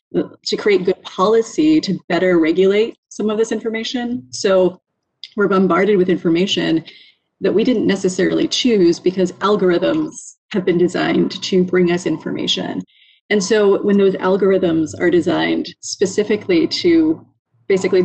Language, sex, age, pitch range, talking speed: English, female, 30-49, 175-210 Hz, 135 wpm